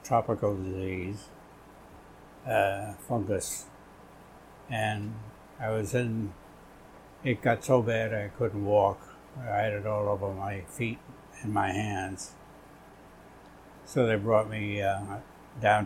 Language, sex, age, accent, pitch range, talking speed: English, male, 70-89, American, 100-115 Hz, 115 wpm